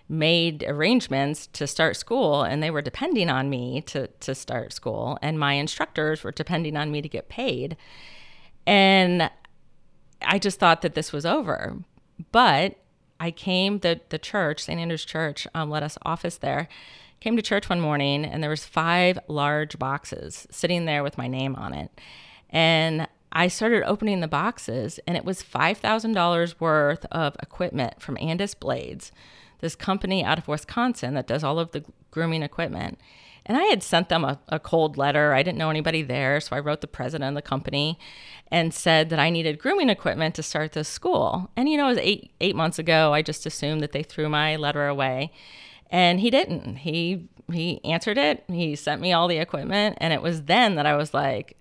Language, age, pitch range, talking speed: English, 40-59, 150-175 Hz, 195 wpm